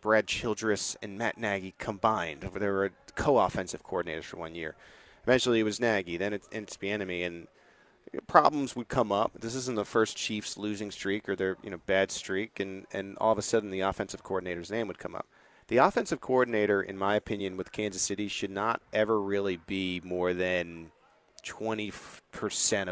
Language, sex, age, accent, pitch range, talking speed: English, male, 30-49, American, 95-115 Hz, 185 wpm